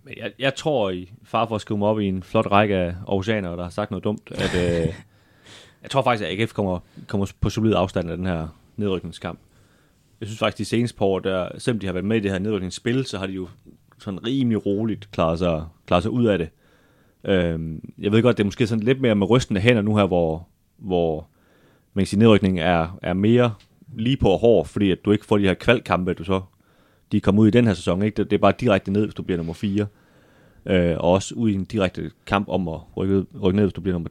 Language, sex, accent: Danish, male, native